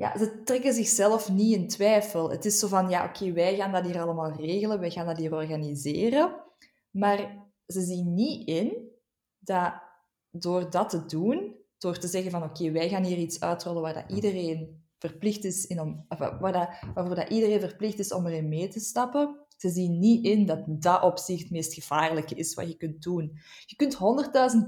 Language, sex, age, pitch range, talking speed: Dutch, female, 20-39, 170-210 Hz, 175 wpm